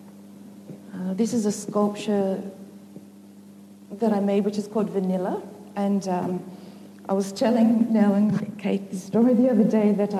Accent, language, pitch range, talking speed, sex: Australian, English, 170-195 Hz, 145 wpm, female